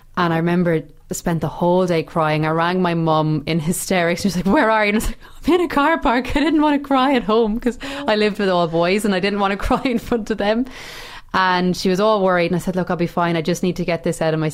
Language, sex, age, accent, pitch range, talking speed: English, female, 20-39, Irish, 160-195 Hz, 305 wpm